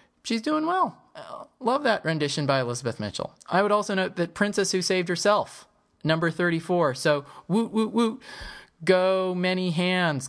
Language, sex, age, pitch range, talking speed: English, male, 20-39, 115-175 Hz, 165 wpm